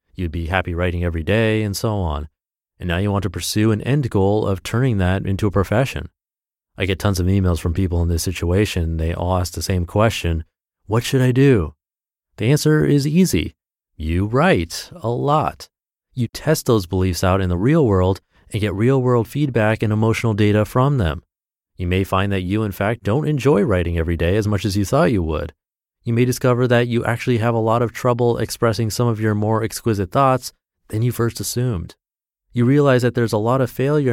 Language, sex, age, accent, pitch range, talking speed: English, male, 30-49, American, 90-120 Hz, 210 wpm